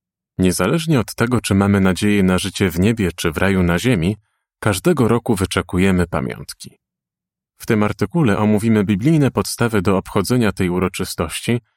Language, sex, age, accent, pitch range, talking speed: Polish, male, 30-49, native, 95-120 Hz, 150 wpm